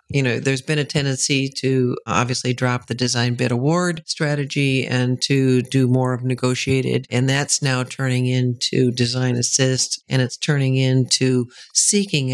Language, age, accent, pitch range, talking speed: English, 50-69, American, 125-140 Hz, 155 wpm